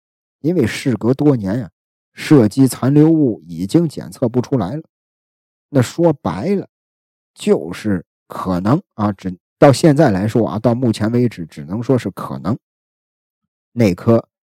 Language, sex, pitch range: Chinese, male, 105-150 Hz